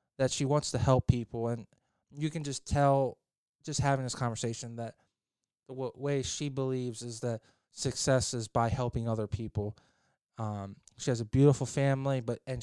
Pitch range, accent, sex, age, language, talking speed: 120-145 Hz, American, male, 20-39, English, 175 wpm